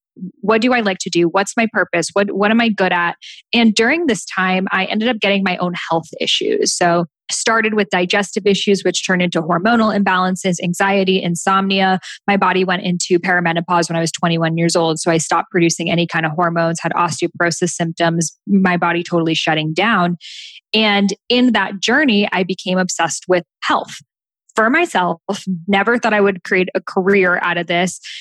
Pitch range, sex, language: 175-210 Hz, female, English